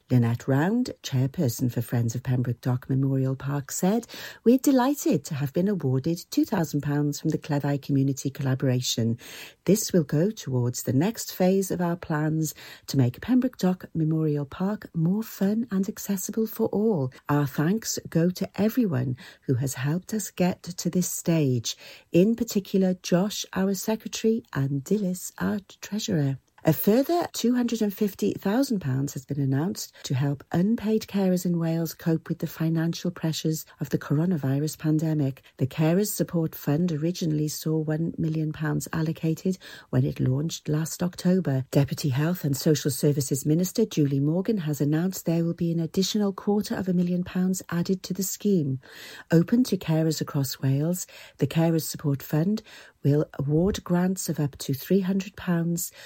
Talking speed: 150 wpm